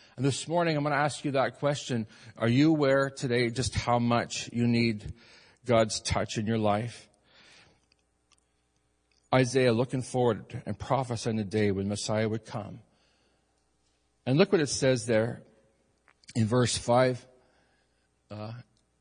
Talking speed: 135 wpm